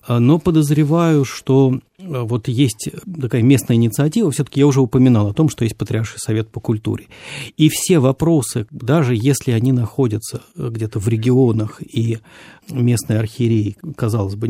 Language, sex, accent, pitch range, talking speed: Russian, male, native, 115-150 Hz, 145 wpm